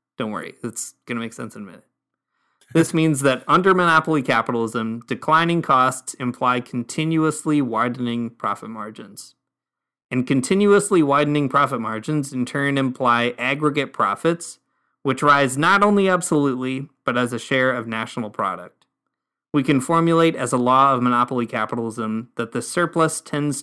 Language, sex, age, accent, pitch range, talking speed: English, male, 20-39, American, 120-145 Hz, 145 wpm